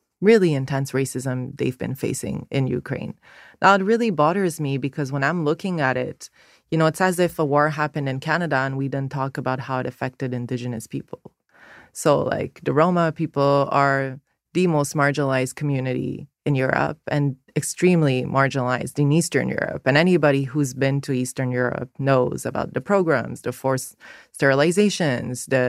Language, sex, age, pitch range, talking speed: English, female, 20-39, 130-150 Hz, 170 wpm